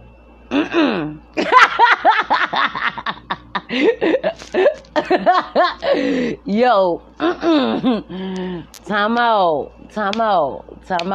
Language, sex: English, female